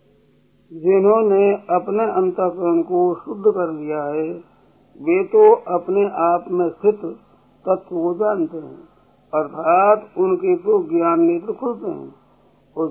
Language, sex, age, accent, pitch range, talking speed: Hindi, male, 50-69, native, 170-240 Hz, 120 wpm